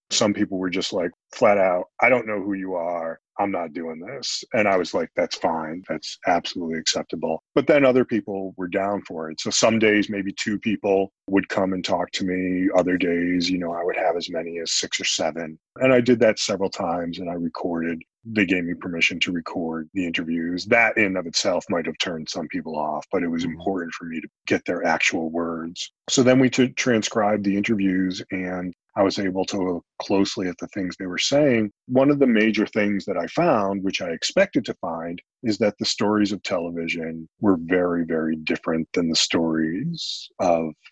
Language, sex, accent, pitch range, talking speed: English, male, American, 85-100 Hz, 210 wpm